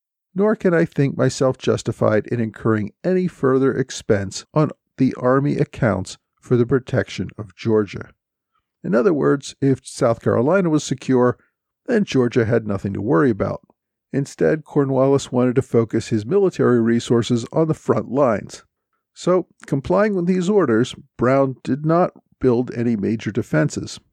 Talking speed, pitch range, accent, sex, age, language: 145 wpm, 110-145 Hz, American, male, 50-69, English